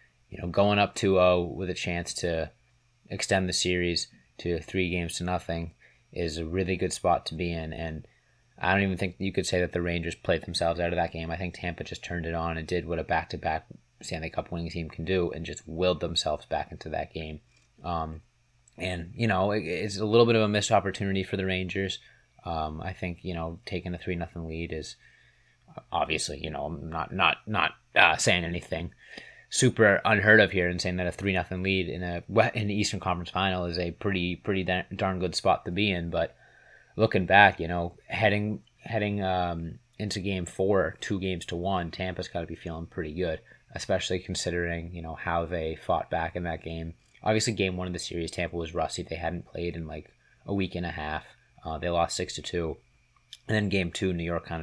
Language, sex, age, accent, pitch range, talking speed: English, male, 30-49, American, 85-95 Hz, 220 wpm